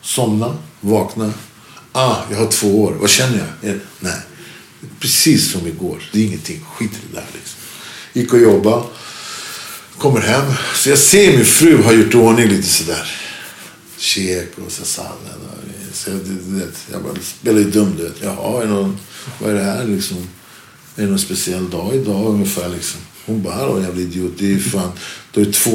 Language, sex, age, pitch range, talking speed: English, male, 50-69, 100-130 Hz, 180 wpm